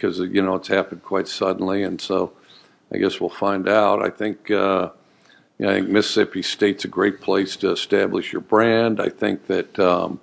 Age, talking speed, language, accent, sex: 50-69, 200 wpm, English, American, male